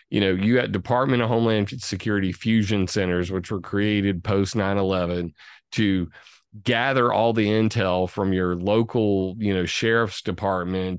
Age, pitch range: 30-49, 95-115 Hz